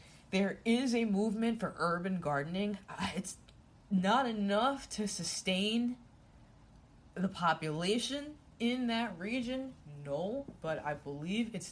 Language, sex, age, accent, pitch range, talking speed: English, female, 20-39, American, 150-210 Hz, 115 wpm